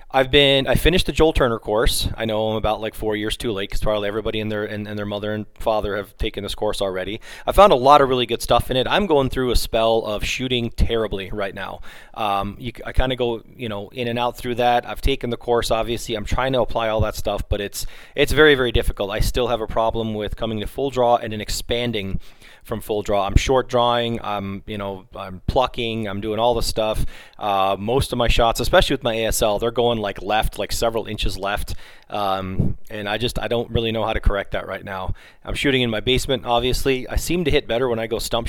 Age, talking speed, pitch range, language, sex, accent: 30-49, 250 wpm, 105-120 Hz, English, male, American